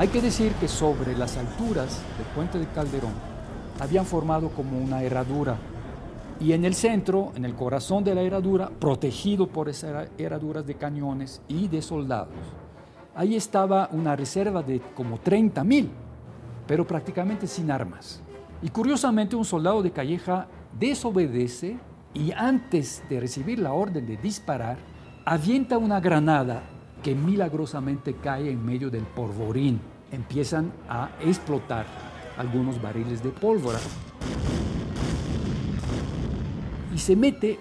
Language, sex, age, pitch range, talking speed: Spanish, male, 50-69, 135-185 Hz, 130 wpm